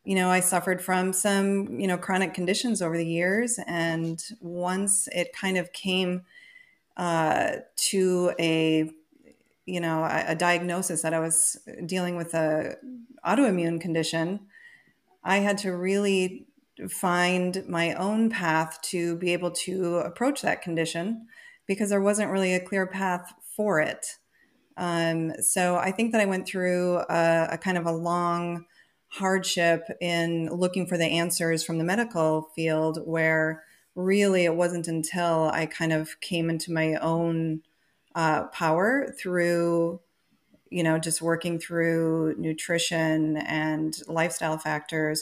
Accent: American